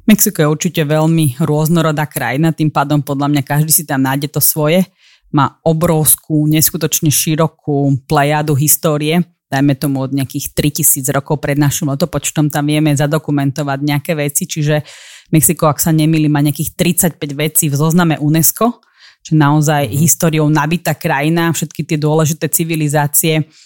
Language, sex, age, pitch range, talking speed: Slovak, female, 30-49, 150-165 Hz, 145 wpm